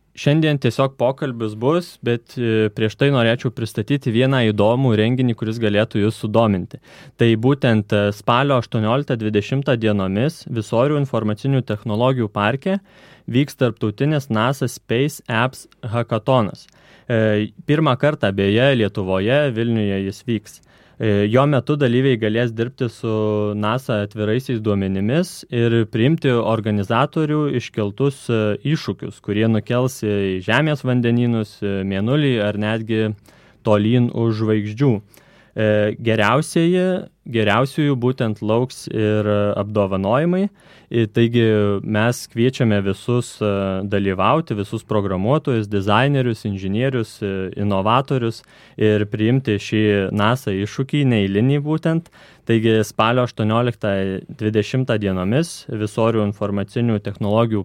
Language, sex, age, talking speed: English, male, 20-39, 95 wpm